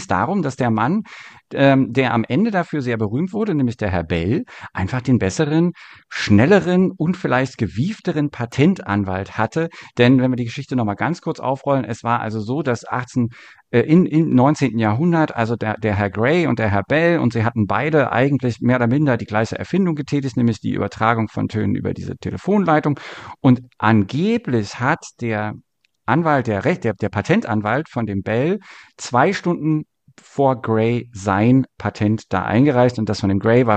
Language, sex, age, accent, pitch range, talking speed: German, male, 50-69, German, 110-145 Hz, 175 wpm